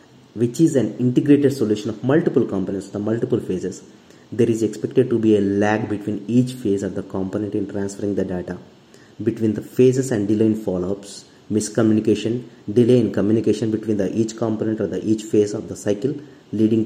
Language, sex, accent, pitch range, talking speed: English, male, Indian, 95-115 Hz, 180 wpm